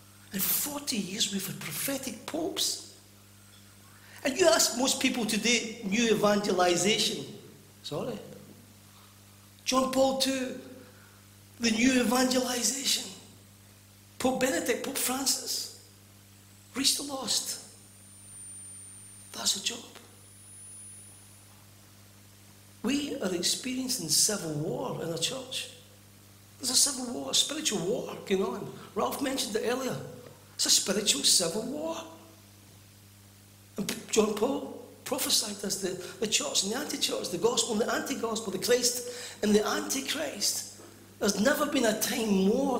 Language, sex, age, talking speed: English, male, 60-79, 120 wpm